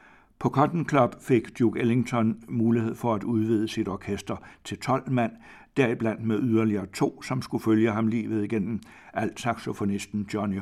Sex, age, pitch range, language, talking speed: male, 60-79, 105-120 Hz, Danish, 155 wpm